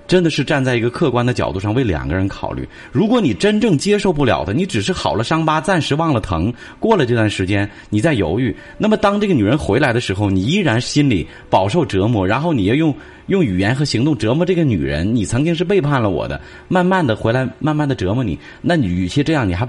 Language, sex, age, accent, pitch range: Chinese, male, 30-49, native, 90-130 Hz